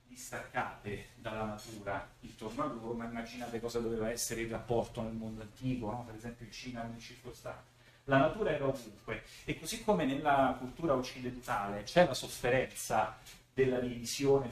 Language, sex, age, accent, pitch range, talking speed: Italian, male, 30-49, native, 115-130 Hz, 160 wpm